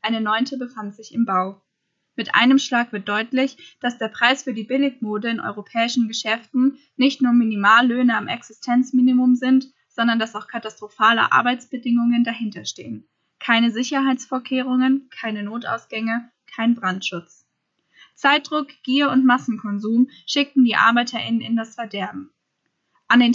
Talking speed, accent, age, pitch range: 130 wpm, German, 10-29, 215-255 Hz